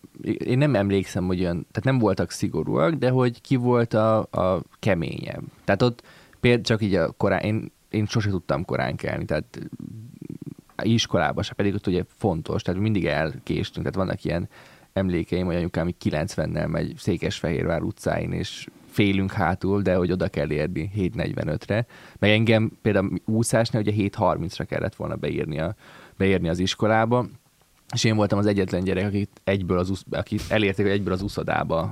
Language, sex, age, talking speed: Hungarian, male, 20-39, 150 wpm